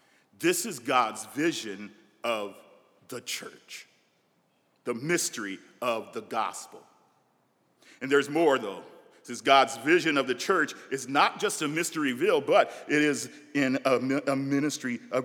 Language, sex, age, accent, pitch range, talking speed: English, male, 40-59, American, 135-220 Hz, 145 wpm